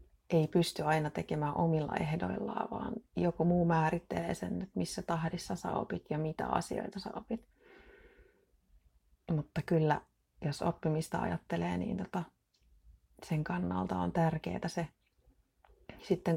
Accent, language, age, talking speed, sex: native, Finnish, 30-49, 115 wpm, female